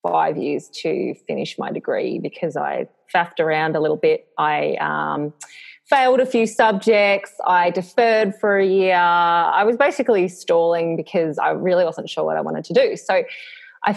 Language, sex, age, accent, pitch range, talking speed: English, female, 20-39, Australian, 170-235 Hz, 170 wpm